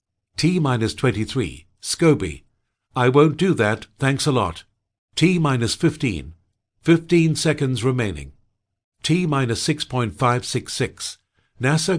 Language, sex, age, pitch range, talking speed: English, male, 60-79, 110-150 Hz, 80 wpm